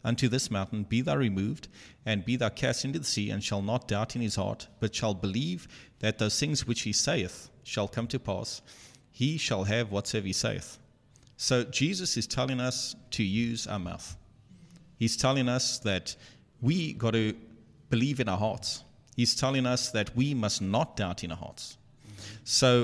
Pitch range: 105-125 Hz